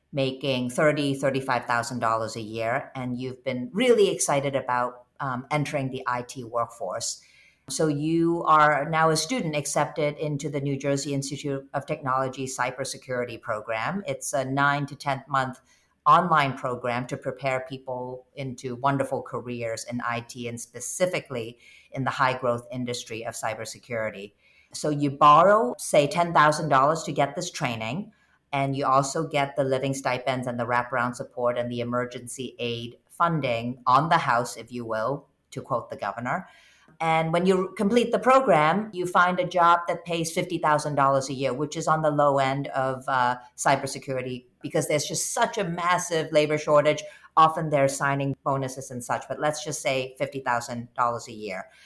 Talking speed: 155 wpm